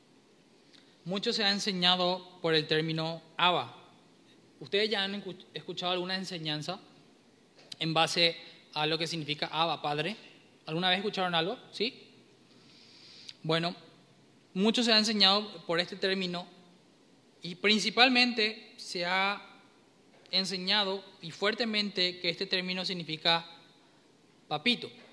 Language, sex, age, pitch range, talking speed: Spanish, male, 20-39, 165-195 Hz, 110 wpm